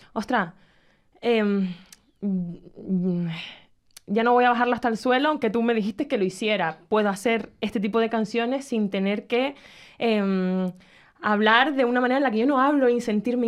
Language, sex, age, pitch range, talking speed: Spanish, female, 20-39, 190-235 Hz, 175 wpm